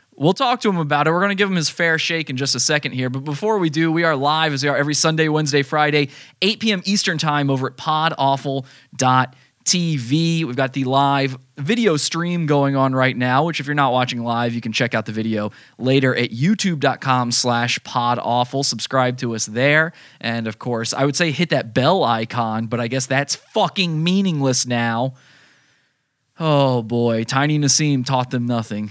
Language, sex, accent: English, male, American